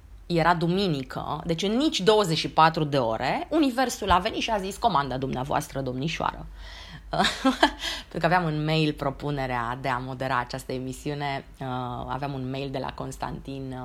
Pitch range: 130-165 Hz